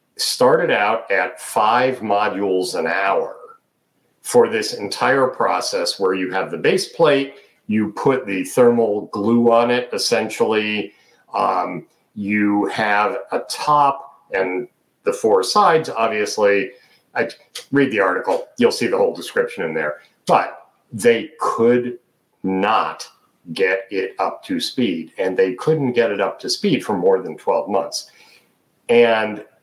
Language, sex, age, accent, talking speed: English, male, 50-69, American, 140 wpm